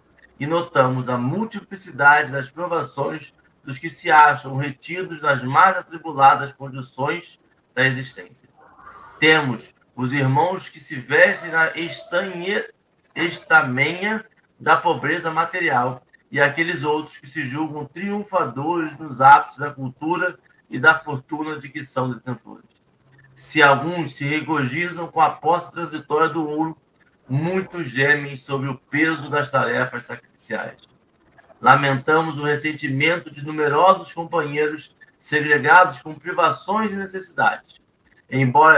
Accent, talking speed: Brazilian, 120 wpm